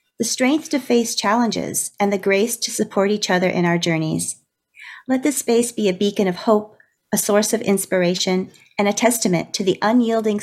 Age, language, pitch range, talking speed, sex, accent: 40-59, English, 180-225 Hz, 190 wpm, female, American